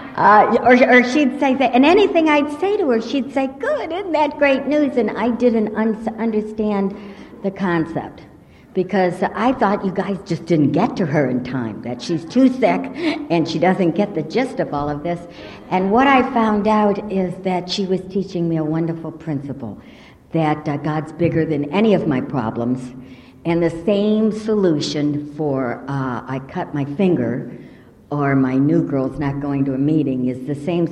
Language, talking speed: English, 185 wpm